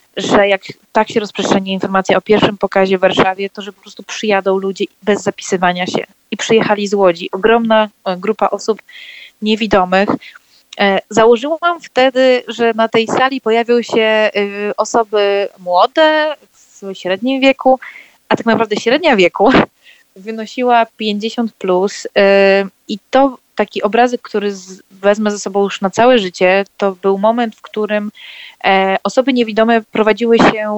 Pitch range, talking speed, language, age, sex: 195-230 Hz, 135 wpm, Polish, 20-39, female